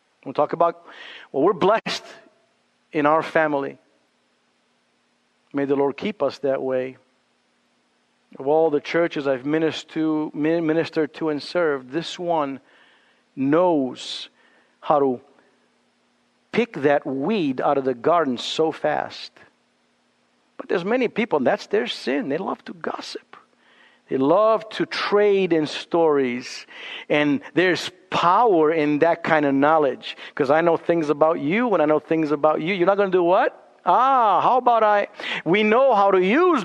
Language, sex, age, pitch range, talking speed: English, male, 50-69, 155-235 Hz, 150 wpm